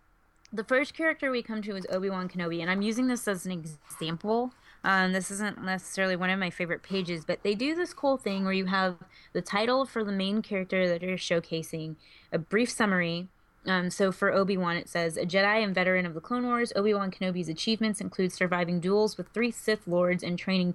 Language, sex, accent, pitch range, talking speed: English, female, American, 175-210 Hz, 210 wpm